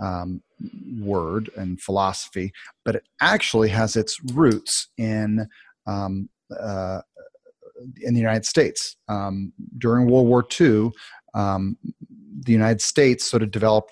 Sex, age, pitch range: male, 30-49, 95-120 Hz